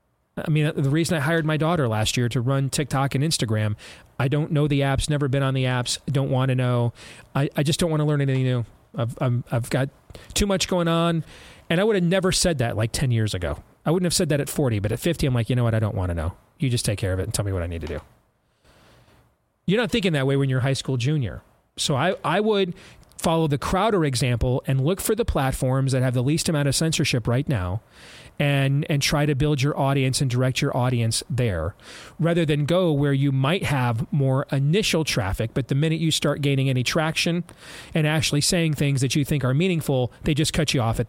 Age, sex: 30-49, male